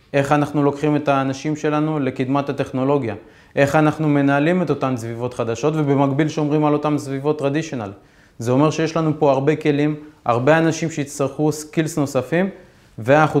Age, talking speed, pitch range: 20-39, 150 wpm, 130-155 Hz